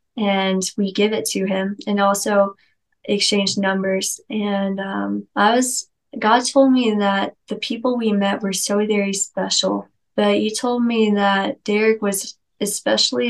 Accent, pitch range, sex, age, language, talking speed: American, 195-215 Hz, female, 20-39, English, 155 wpm